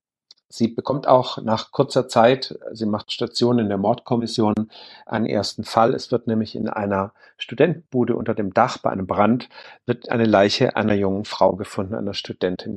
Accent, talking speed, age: German, 170 wpm, 50-69